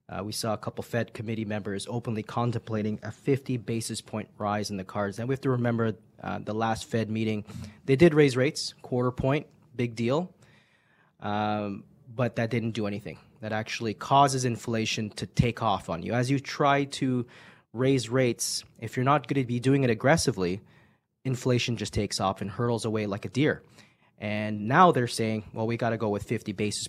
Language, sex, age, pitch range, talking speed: English, male, 20-39, 110-130 Hz, 195 wpm